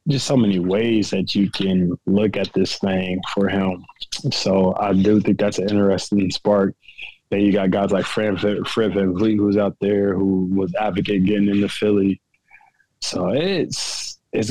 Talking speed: 165 wpm